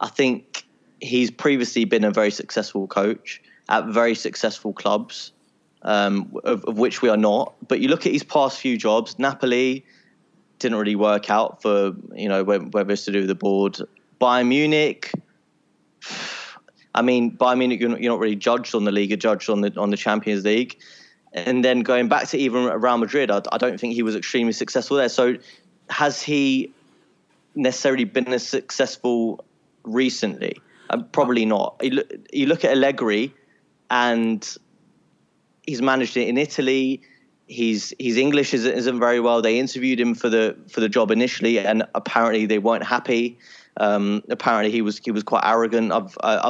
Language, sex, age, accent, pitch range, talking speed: English, male, 20-39, British, 105-130 Hz, 175 wpm